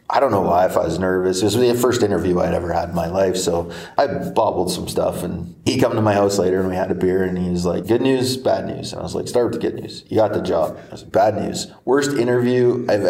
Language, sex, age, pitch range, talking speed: English, male, 30-49, 95-110 Hz, 300 wpm